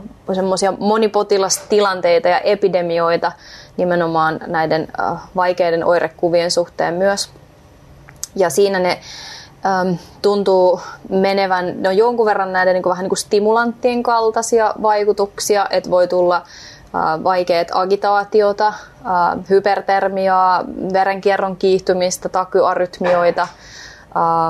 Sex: female